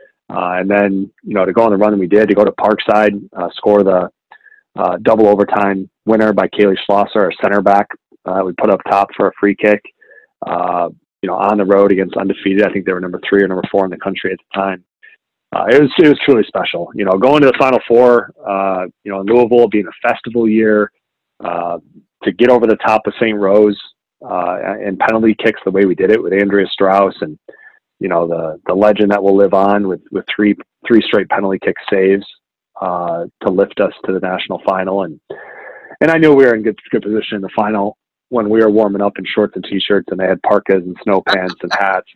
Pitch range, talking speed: 95-110 Hz, 230 wpm